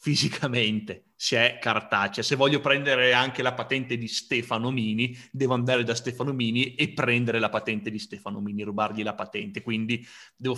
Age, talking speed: 30-49, 170 wpm